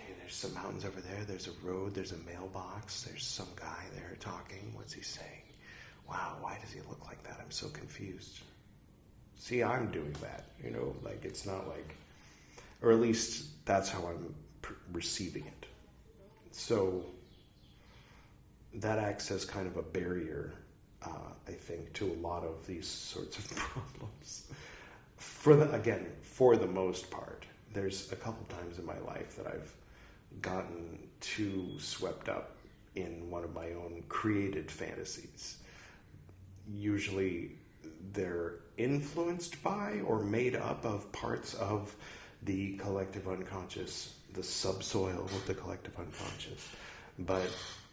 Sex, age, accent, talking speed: male, 40-59, American, 140 wpm